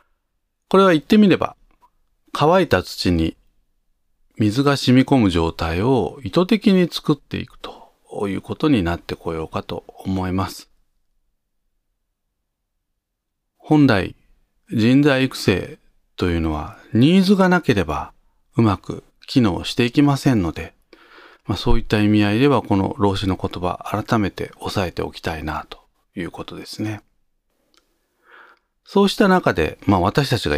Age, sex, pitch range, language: 40-59, male, 90-135 Hz, Japanese